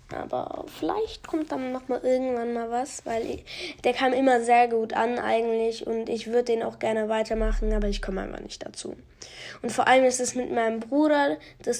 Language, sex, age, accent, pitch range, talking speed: German, female, 20-39, German, 225-280 Hz, 200 wpm